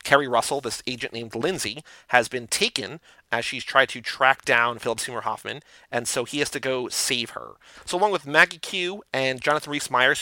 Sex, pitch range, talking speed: male, 125-160 Hz, 200 wpm